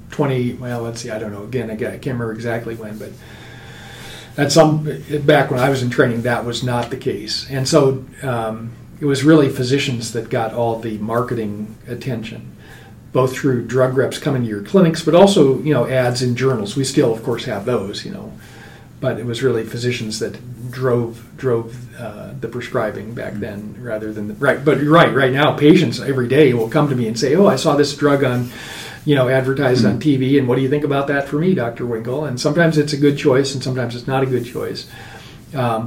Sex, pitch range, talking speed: male, 115-145 Hz, 220 wpm